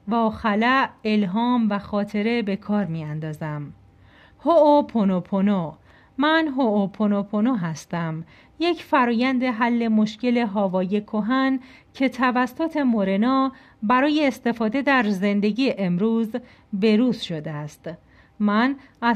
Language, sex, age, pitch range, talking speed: Persian, female, 40-59, 200-260 Hz, 105 wpm